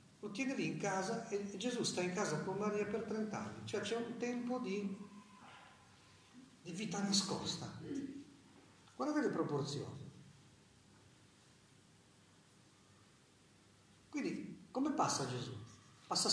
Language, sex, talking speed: Italian, male, 110 wpm